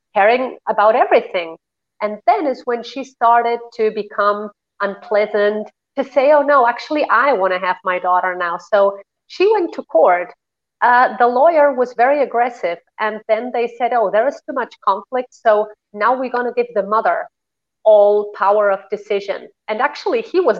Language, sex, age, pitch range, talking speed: English, female, 30-49, 200-245 Hz, 180 wpm